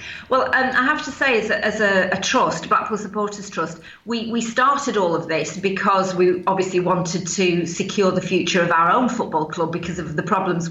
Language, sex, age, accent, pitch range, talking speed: English, female, 40-59, British, 185-230 Hz, 200 wpm